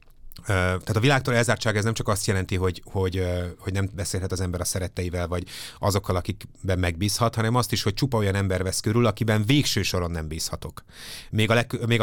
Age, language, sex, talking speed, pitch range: 30-49, Hungarian, male, 200 wpm, 95-110 Hz